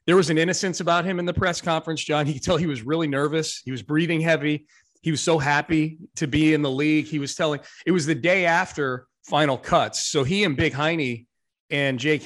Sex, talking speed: male, 240 wpm